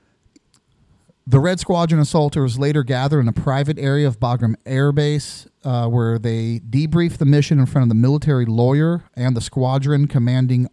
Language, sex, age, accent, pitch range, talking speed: English, male, 40-59, American, 115-140 Hz, 170 wpm